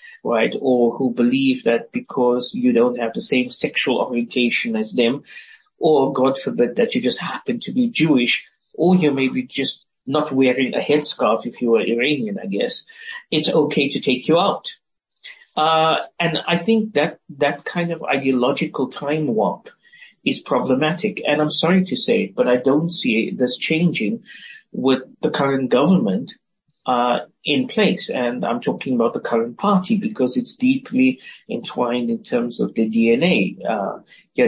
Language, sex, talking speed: English, male, 165 wpm